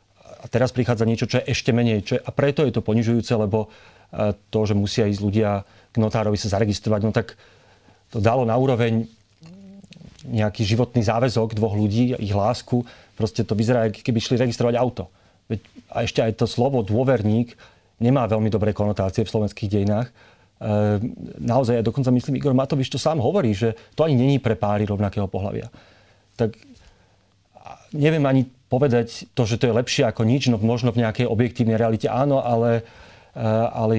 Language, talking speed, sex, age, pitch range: Slovak, 170 wpm, male, 40-59, 105-120 Hz